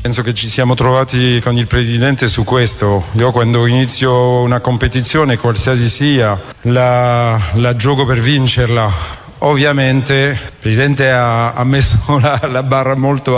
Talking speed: 145 wpm